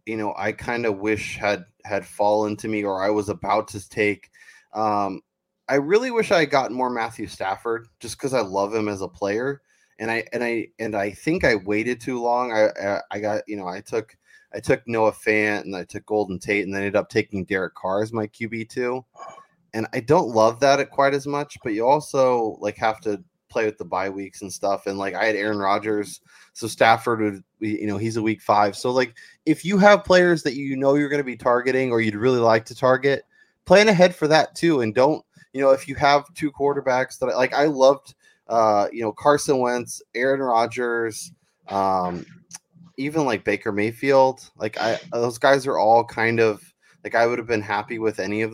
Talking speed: 220 wpm